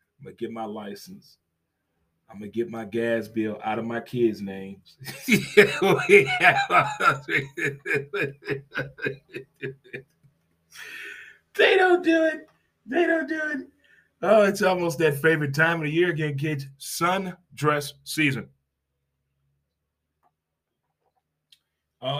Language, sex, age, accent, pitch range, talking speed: English, male, 30-49, American, 100-150 Hz, 110 wpm